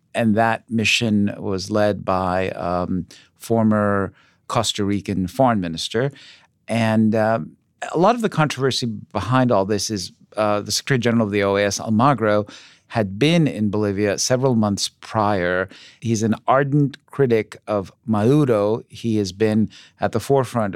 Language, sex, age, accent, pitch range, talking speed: English, male, 40-59, American, 100-120 Hz, 145 wpm